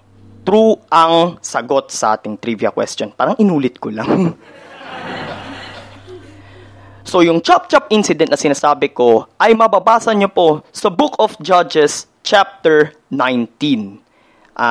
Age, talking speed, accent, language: 20-39, 115 wpm, native, Filipino